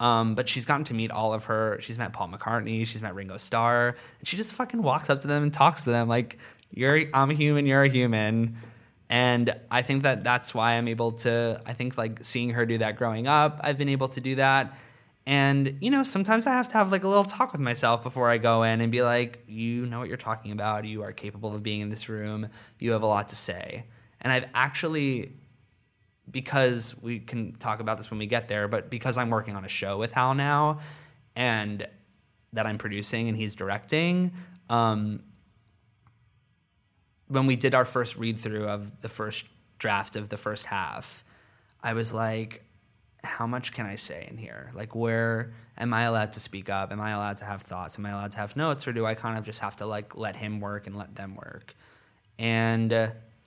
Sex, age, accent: male, 20-39, American